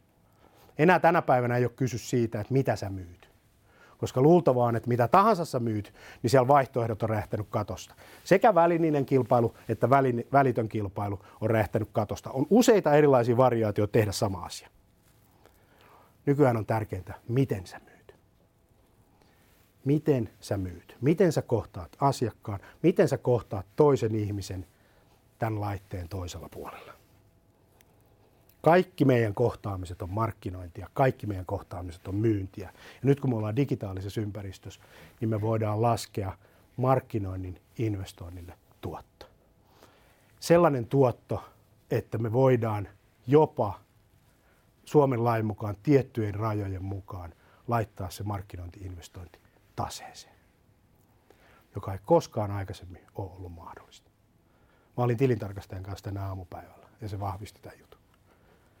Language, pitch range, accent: Finnish, 100-125 Hz, native